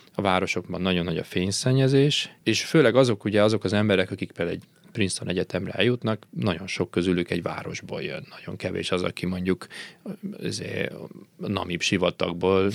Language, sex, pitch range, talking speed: Hungarian, male, 90-115 Hz, 150 wpm